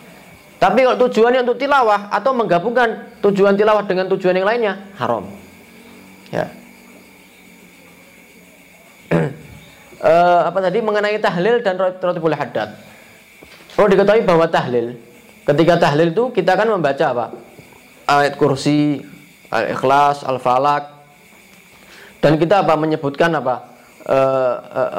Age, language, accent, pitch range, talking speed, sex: 20-39, Indonesian, native, 130-180 Hz, 115 wpm, male